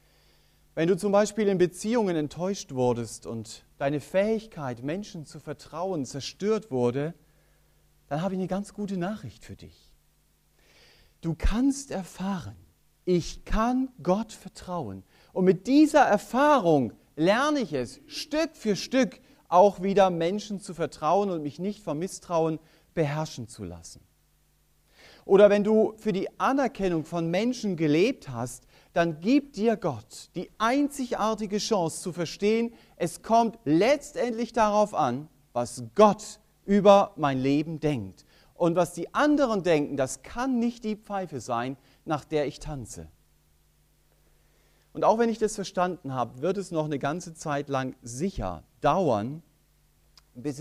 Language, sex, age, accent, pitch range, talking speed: German, male, 40-59, German, 140-205 Hz, 140 wpm